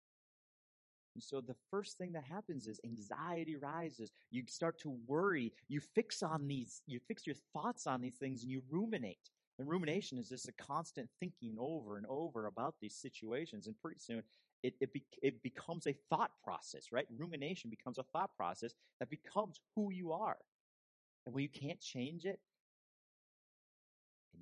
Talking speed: 170 wpm